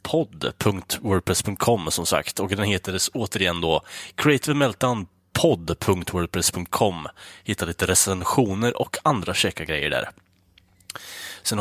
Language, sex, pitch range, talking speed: Swedish, male, 90-125 Hz, 100 wpm